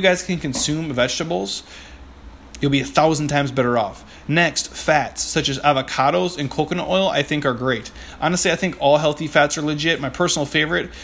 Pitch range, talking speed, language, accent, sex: 130-165 Hz, 185 wpm, English, American, male